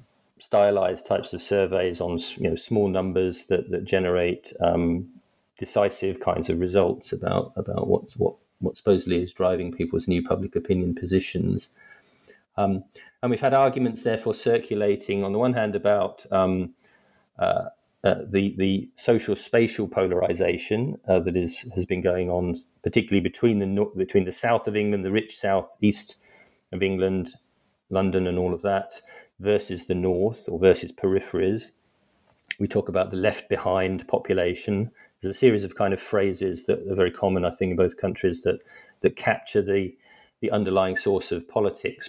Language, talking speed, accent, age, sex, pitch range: English, 165 wpm, British, 40-59, male, 90-105 Hz